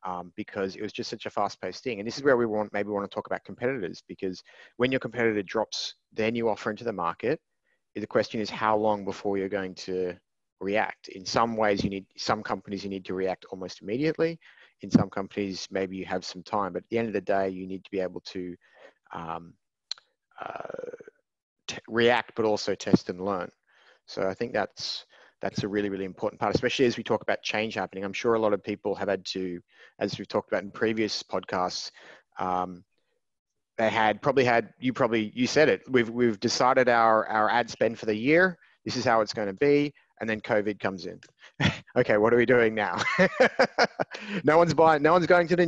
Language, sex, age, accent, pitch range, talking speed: English, male, 30-49, Australian, 95-130 Hz, 215 wpm